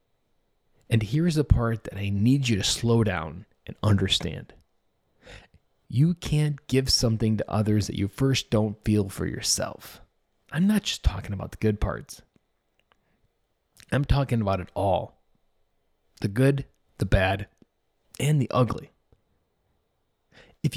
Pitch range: 105-125 Hz